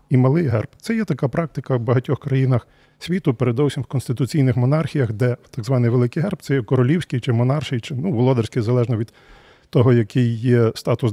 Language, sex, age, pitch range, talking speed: Ukrainian, male, 40-59, 125-155 Hz, 185 wpm